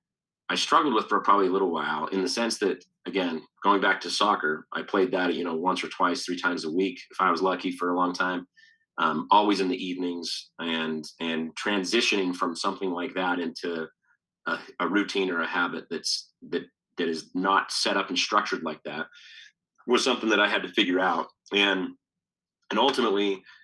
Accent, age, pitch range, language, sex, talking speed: American, 30-49, 85-100 Hz, English, male, 200 wpm